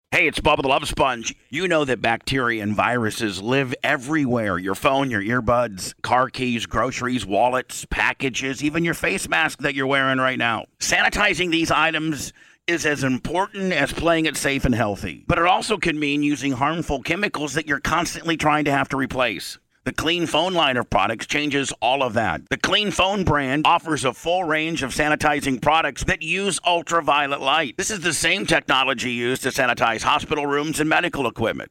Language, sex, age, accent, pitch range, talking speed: English, male, 50-69, American, 125-160 Hz, 185 wpm